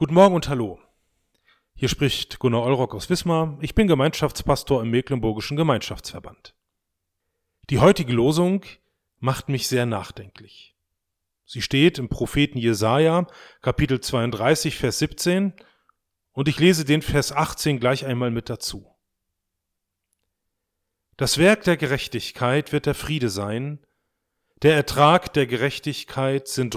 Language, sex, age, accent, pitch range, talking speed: German, male, 30-49, German, 105-155 Hz, 125 wpm